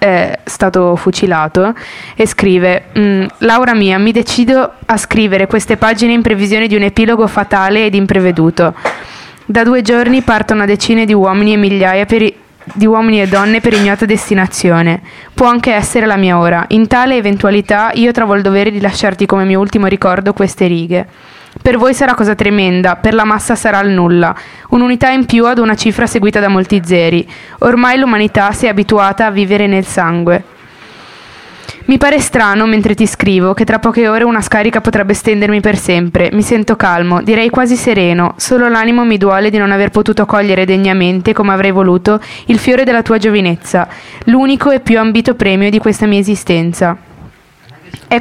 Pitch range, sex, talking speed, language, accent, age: 195-230 Hz, female, 175 wpm, Italian, native, 20-39